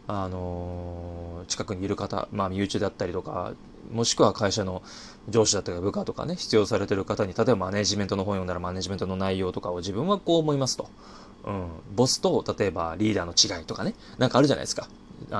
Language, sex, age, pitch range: Japanese, male, 20-39, 90-110 Hz